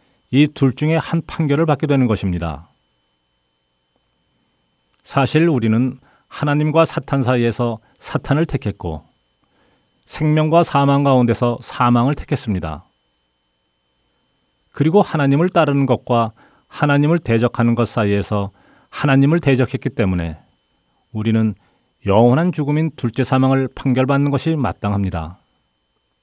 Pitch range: 90-140 Hz